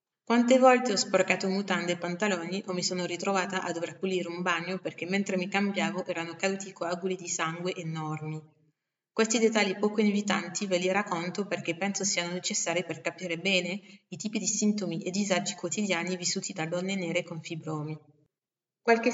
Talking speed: 170 wpm